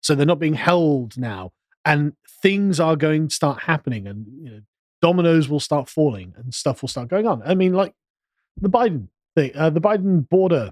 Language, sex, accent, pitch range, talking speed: English, male, British, 150-195 Hz, 200 wpm